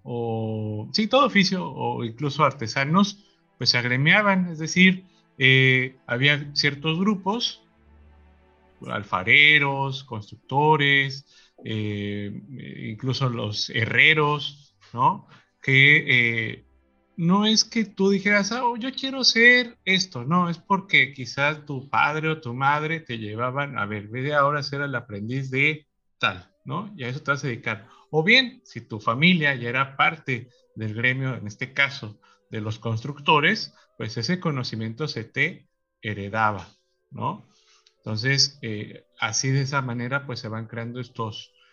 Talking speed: 140 wpm